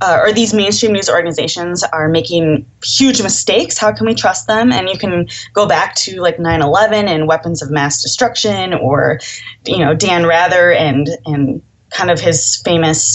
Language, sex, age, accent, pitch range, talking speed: English, female, 20-39, American, 155-220 Hz, 180 wpm